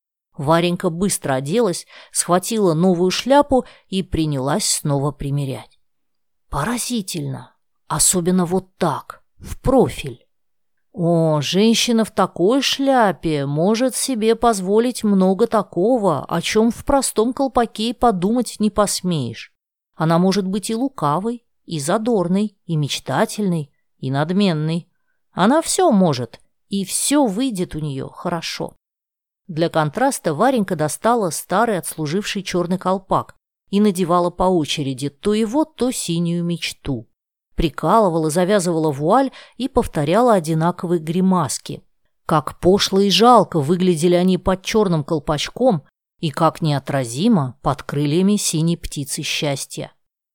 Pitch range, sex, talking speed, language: 160-225 Hz, female, 115 wpm, Russian